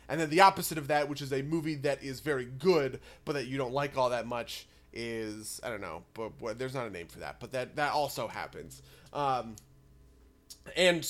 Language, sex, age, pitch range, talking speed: English, male, 30-49, 130-165 Hz, 215 wpm